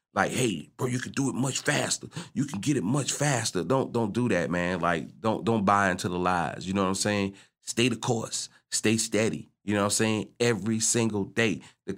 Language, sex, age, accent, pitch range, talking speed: English, male, 30-49, American, 95-120 Hz, 230 wpm